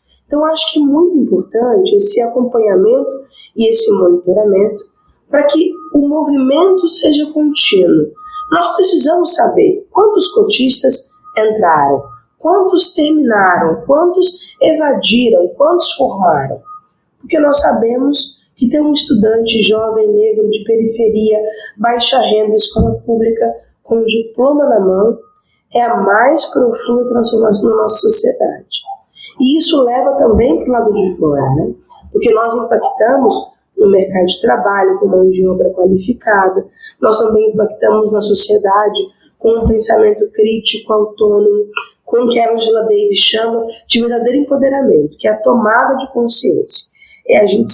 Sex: female